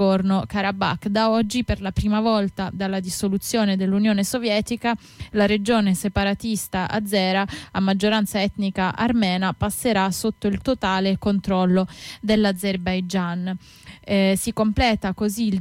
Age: 20-39